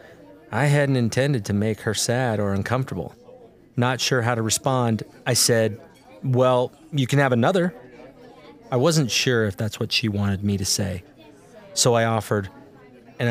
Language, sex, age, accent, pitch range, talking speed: English, male, 30-49, American, 100-125 Hz, 160 wpm